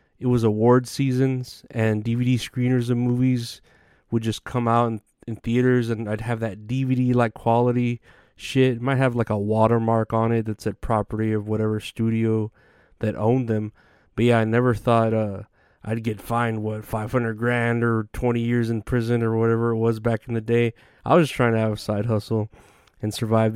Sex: male